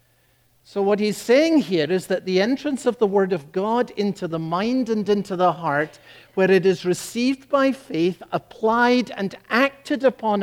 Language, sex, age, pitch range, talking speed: English, male, 60-79, 125-205 Hz, 180 wpm